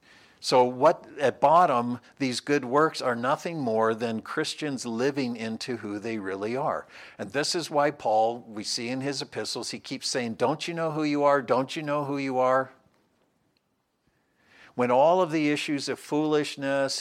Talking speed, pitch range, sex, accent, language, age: 175 wpm, 120-145 Hz, male, American, English, 60-79